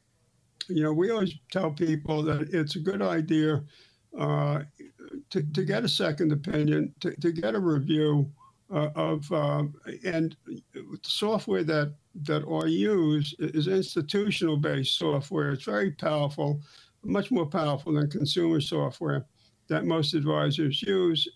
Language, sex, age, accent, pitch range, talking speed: English, male, 60-79, American, 145-175 Hz, 135 wpm